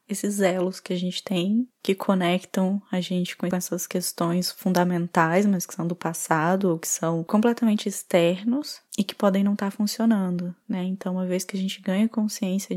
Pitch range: 185-230 Hz